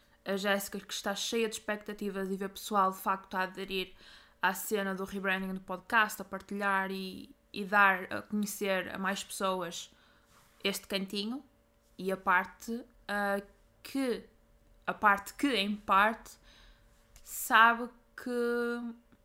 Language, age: Portuguese, 20-39